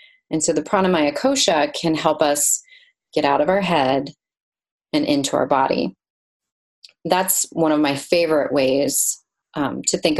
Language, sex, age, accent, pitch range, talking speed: English, female, 30-49, American, 150-190 Hz, 155 wpm